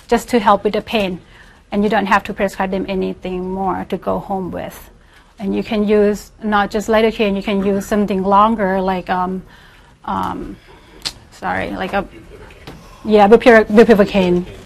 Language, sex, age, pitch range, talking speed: English, female, 30-49, 195-235 Hz, 160 wpm